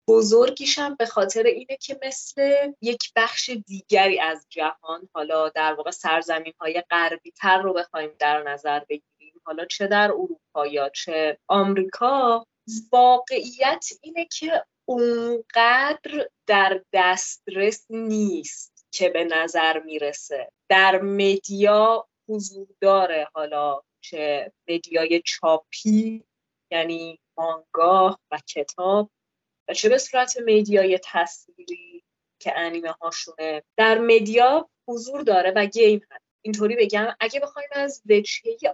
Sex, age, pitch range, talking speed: female, 30-49, 165-240 Hz, 110 wpm